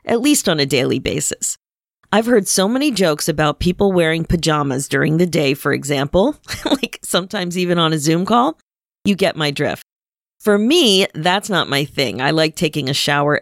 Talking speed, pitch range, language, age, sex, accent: 190 wpm, 155-235 Hz, English, 40-59, female, American